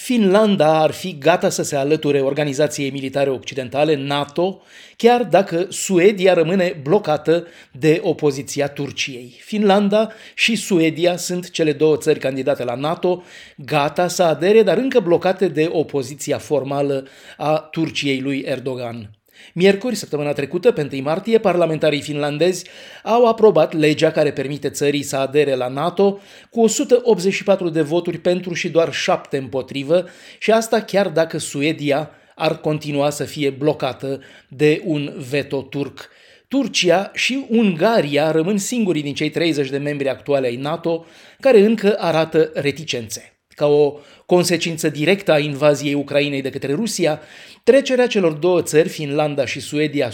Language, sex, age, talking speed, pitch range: Romanian, male, 30-49, 140 wpm, 145-185 Hz